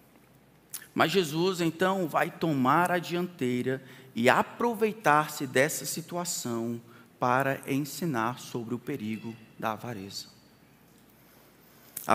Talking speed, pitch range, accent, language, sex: 95 wpm, 150-195 Hz, Brazilian, Portuguese, male